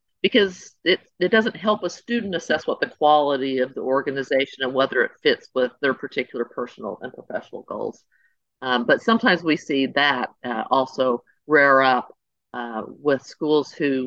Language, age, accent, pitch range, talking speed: English, 50-69, American, 130-165 Hz, 165 wpm